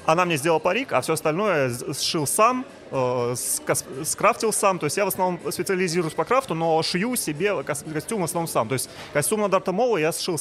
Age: 30-49